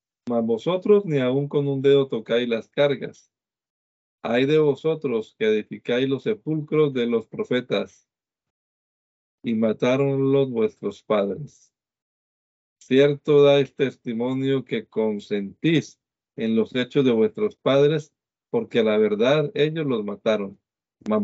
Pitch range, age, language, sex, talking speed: 110-135 Hz, 50-69, Spanish, male, 120 wpm